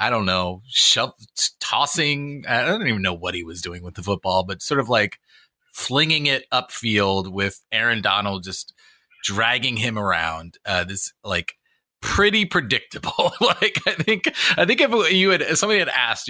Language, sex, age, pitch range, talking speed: English, male, 30-49, 90-125 Hz, 170 wpm